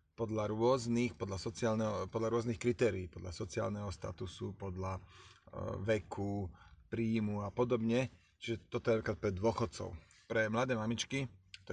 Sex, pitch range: male, 95-115 Hz